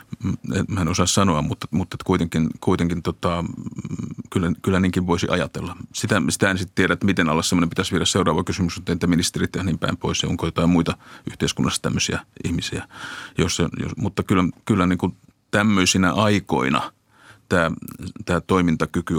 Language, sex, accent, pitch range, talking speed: Finnish, male, native, 80-95 Hz, 160 wpm